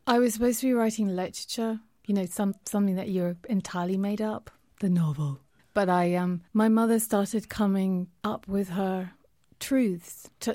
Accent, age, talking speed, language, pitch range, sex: British, 30-49, 170 wpm, English, 185-220 Hz, female